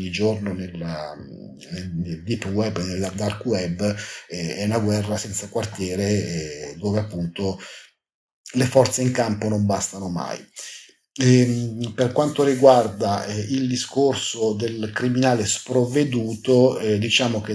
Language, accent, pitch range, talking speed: Italian, native, 100-115 Hz, 125 wpm